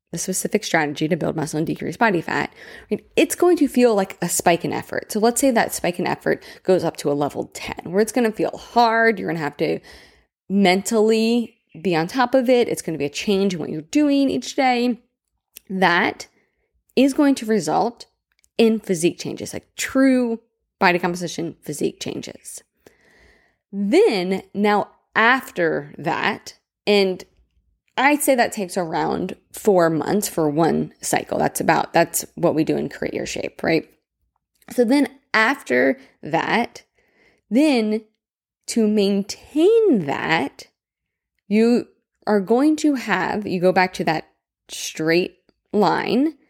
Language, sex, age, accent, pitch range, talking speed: English, female, 20-39, American, 175-240 Hz, 155 wpm